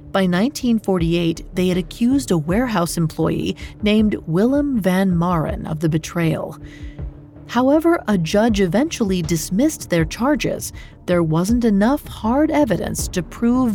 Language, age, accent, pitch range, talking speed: English, 40-59, American, 165-230 Hz, 125 wpm